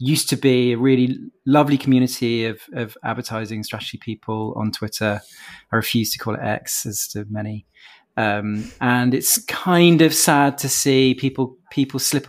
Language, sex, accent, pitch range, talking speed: English, male, British, 115-130 Hz, 165 wpm